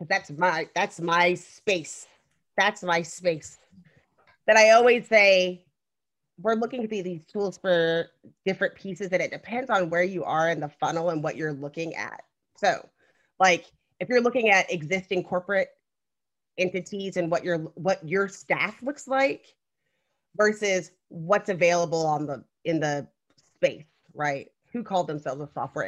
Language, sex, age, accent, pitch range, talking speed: English, female, 30-49, American, 155-195 Hz, 155 wpm